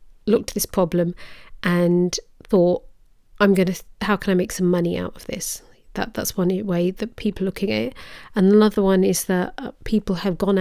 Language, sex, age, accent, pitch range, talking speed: English, female, 40-59, British, 180-205 Hz, 205 wpm